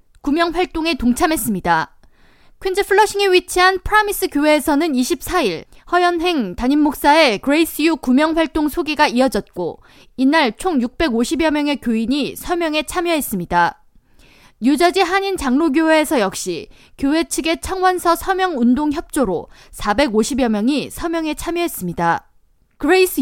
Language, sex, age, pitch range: Korean, female, 20-39, 245-345 Hz